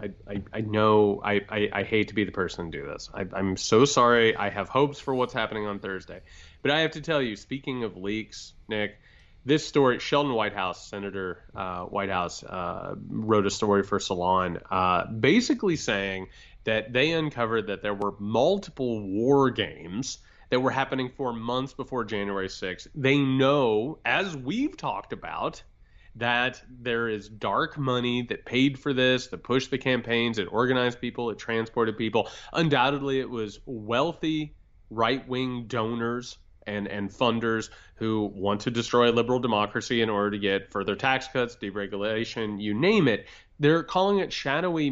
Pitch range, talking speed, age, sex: 100-130 Hz, 165 wpm, 30-49, male